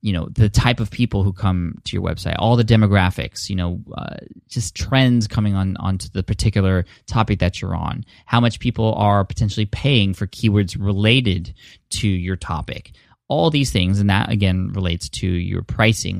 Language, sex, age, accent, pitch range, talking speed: English, male, 20-39, American, 95-110 Hz, 185 wpm